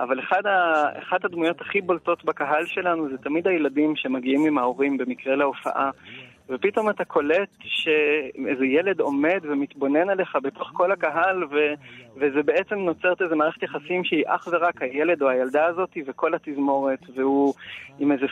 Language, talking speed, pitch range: Hebrew, 145 wpm, 140-185 Hz